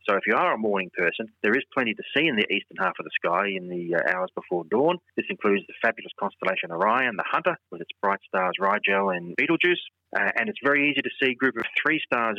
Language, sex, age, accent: English, male, 30-49, Australian